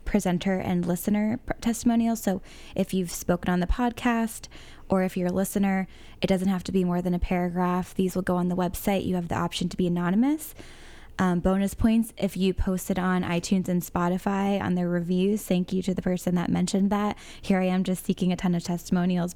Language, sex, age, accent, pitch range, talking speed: English, female, 10-29, American, 175-190 Hz, 215 wpm